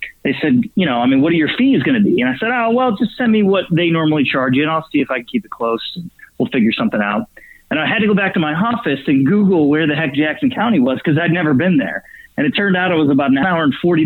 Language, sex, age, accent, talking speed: English, male, 30-49, American, 305 wpm